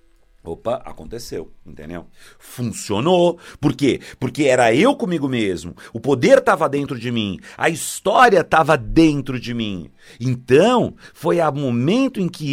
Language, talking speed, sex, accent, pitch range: Portuguese, 140 wpm, male, Brazilian, 105-145 Hz